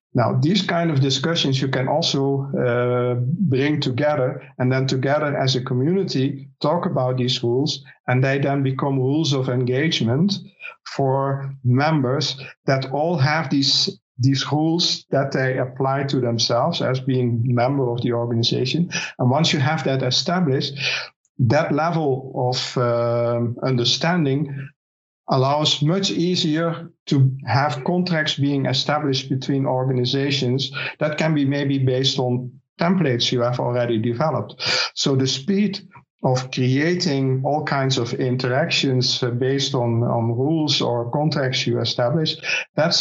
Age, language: 50-69, English